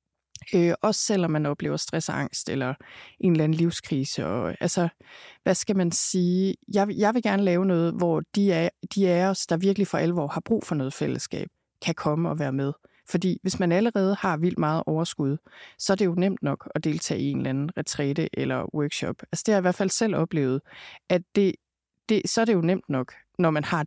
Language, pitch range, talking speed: Danish, 155-200 Hz, 220 wpm